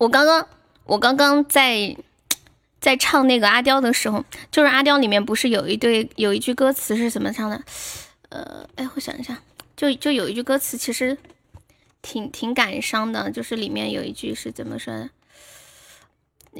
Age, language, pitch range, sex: 10-29, Chinese, 230-285 Hz, female